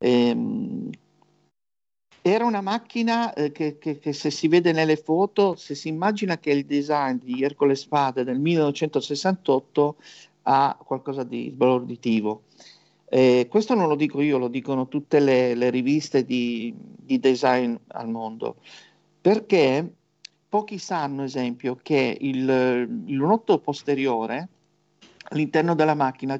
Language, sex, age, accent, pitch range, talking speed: Italian, male, 50-69, native, 130-160 Hz, 125 wpm